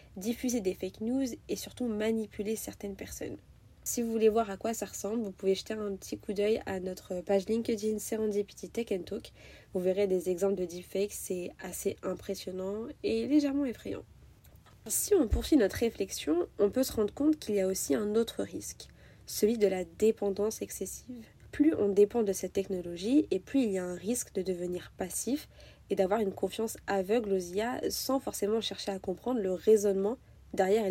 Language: French